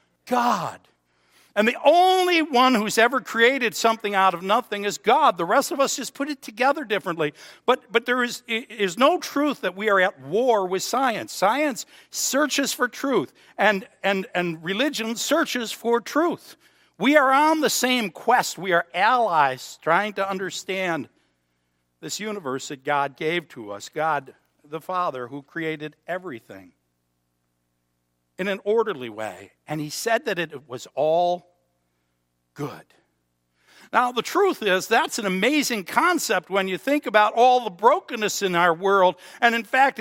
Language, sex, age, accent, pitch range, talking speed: English, male, 60-79, American, 170-265 Hz, 160 wpm